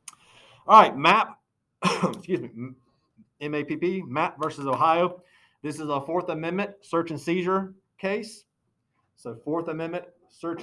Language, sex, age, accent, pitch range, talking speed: English, male, 40-59, American, 130-180 Hz, 125 wpm